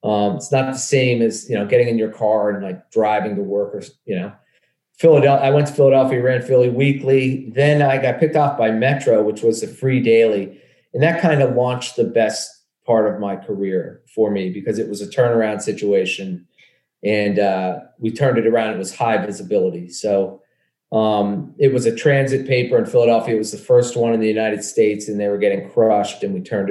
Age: 40-59